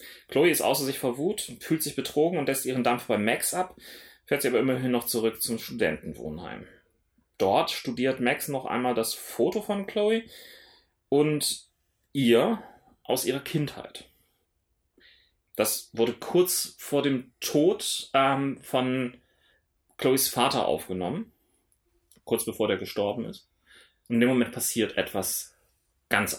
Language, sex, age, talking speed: German, male, 30-49, 135 wpm